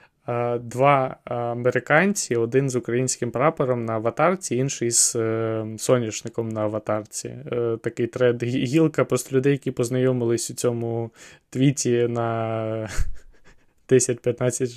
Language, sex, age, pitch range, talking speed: Ukrainian, male, 20-39, 120-135 Hz, 110 wpm